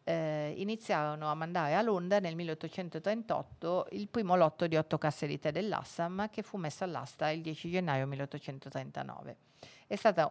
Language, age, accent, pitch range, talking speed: Italian, 40-59, native, 150-175 Hz, 155 wpm